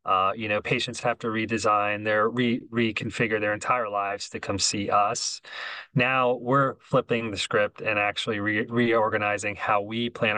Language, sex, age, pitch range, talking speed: English, male, 30-49, 105-120 Hz, 170 wpm